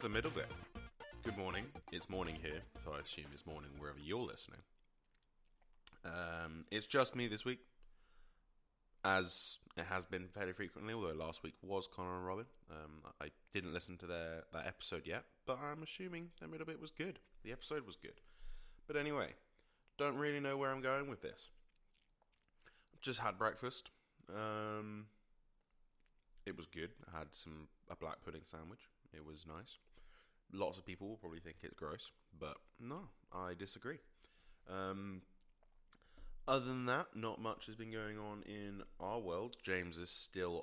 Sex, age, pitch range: male, 20-39, 85-110 Hz